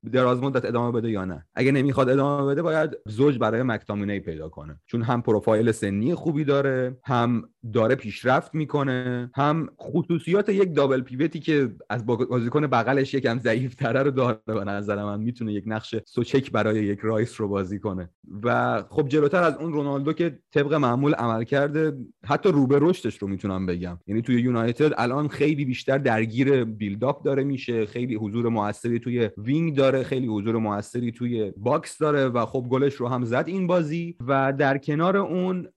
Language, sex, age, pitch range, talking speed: Persian, male, 30-49, 110-140 Hz, 175 wpm